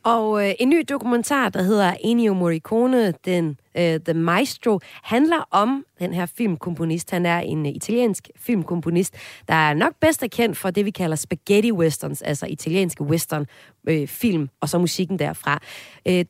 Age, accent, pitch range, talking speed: 30-49, native, 155-215 Hz, 160 wpm